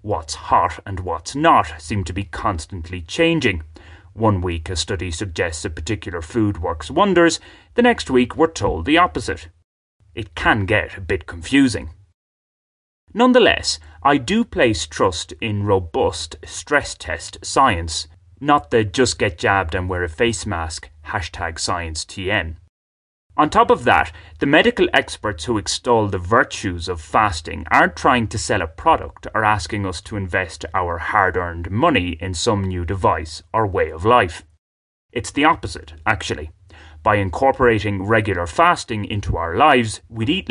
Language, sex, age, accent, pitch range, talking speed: English, male, 30-49, British, 85-110 Hz, 145 wpm